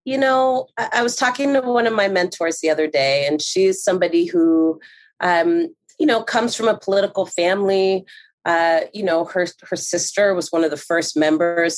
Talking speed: 190 wpm